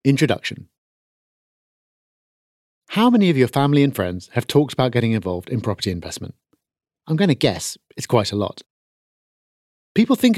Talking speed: 150 wpm